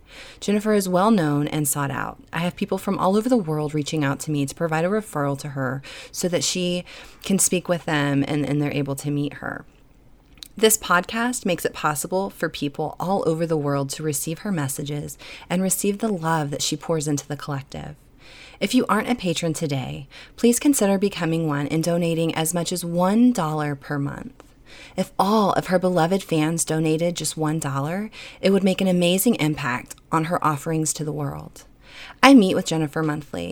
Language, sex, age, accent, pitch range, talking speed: English, female, 20-39, American, 150-180 Hz, 195 wpm